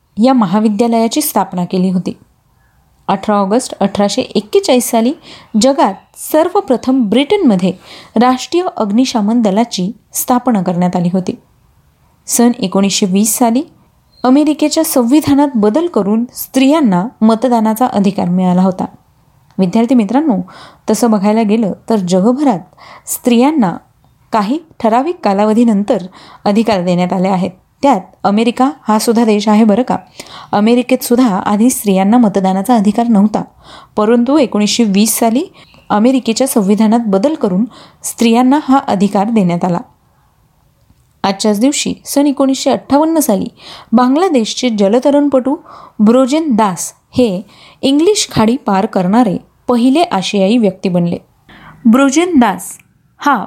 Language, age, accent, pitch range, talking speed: Marathi, 30-49, native, 205-260 Hz, 105 wpm